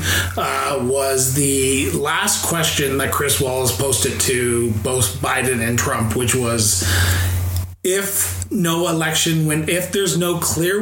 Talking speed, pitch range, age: 135 wpm, 120-165 Hz, 30-49